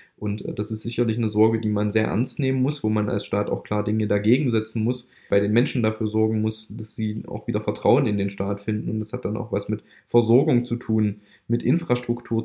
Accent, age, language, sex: German, 20-39, German, male